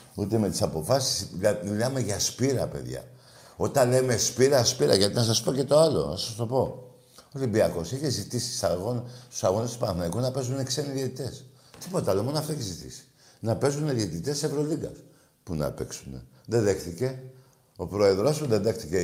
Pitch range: 105-145 Hz